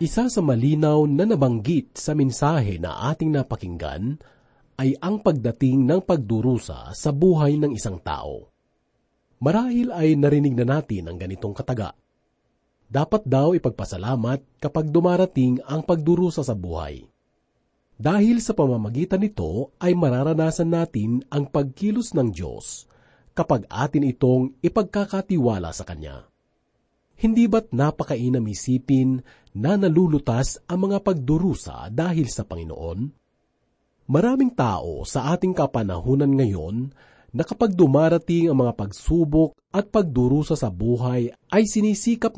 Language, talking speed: Filipino, 115 wpm